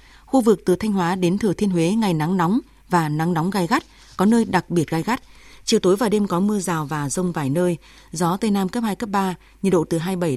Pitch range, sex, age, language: 165-200 Hz, female, 20-39, Vietnamese